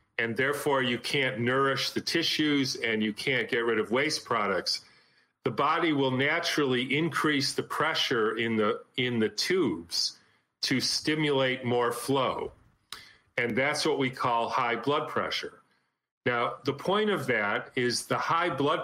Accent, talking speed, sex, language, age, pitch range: American, 150 wpm, male, English, 40-59, 120-145 Hz